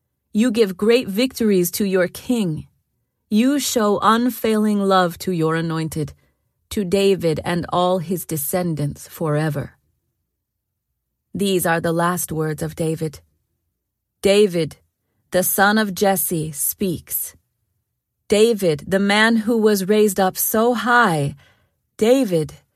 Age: 40-59